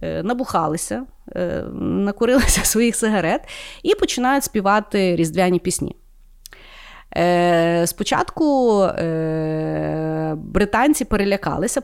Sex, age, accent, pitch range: female, 30-49, native, 170-215 Hz